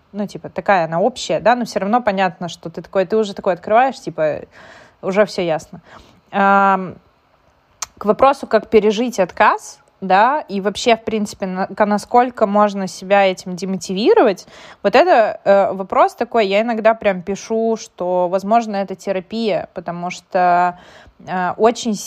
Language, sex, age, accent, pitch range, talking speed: Russian, female, 20-39, native, 185-220 Hz, 140 wpm